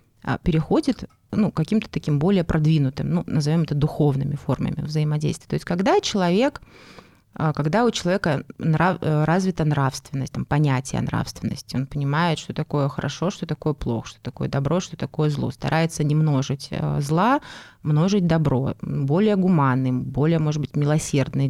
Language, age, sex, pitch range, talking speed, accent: Russian, 20-39, female, 150-190 Hz, 140 wpm, native